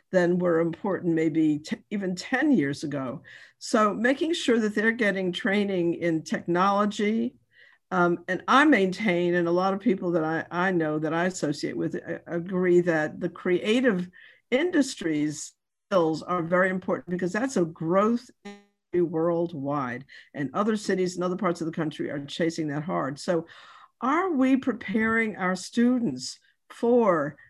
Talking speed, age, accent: 155 wpm, 50-69, American